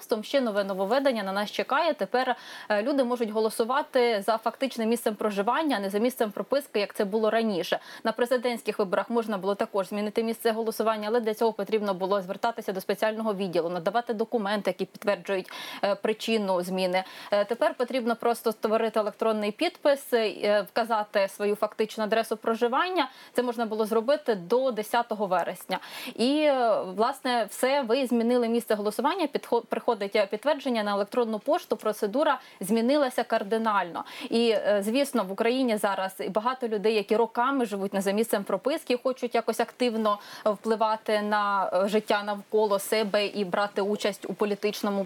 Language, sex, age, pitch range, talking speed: Ukrainian, female, 20-39, 210-250 Hz, 145 wpm